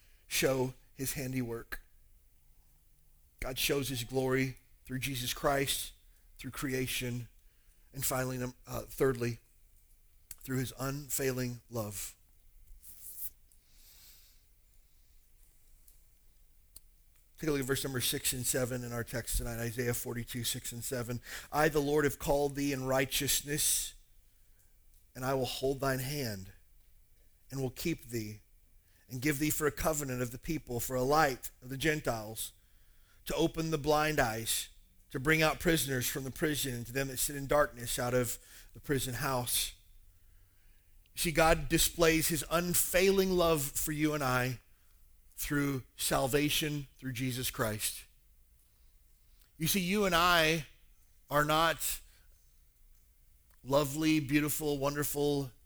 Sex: male